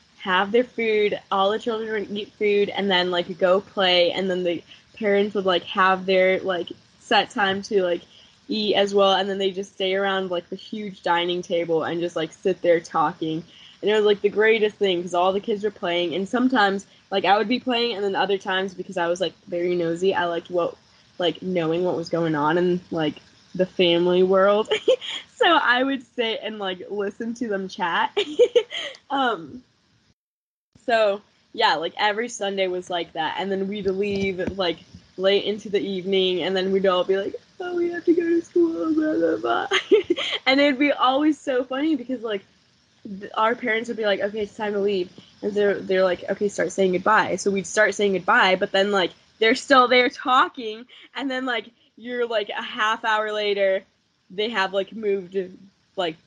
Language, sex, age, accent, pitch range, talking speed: English, female, 10-29, American, 185-225 Hz, 200 wpm